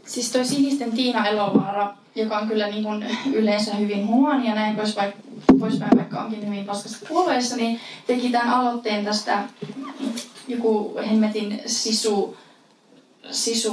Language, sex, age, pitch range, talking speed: Finnish, female, 20-39, 210-255 Hz, 140 wpm